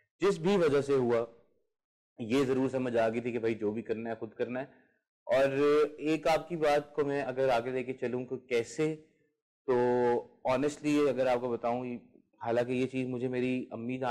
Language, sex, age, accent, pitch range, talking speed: English, male, 30-49, Indian, 125-150 Hz, 185 wpm